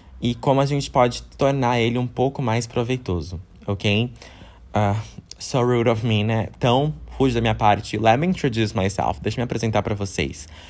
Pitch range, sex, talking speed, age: 100-125 Hz, male, 175 wpm, 20-39